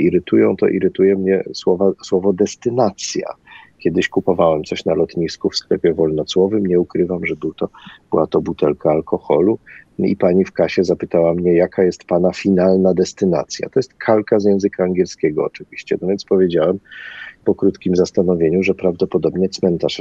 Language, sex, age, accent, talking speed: Polish, male, 40-59, native, 145 wpm